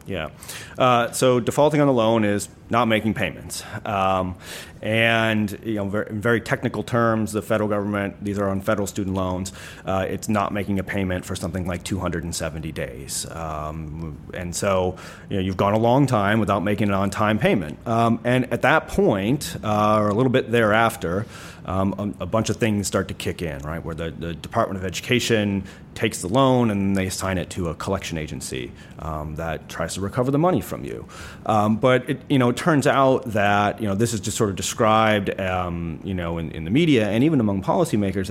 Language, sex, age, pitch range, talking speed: English, male, 30-49, 95-115 Hz, 200 wpm